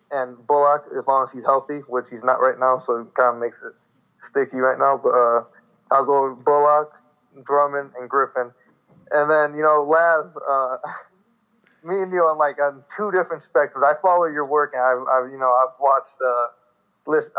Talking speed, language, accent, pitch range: 205 wpm, English, American, 130-160 Hz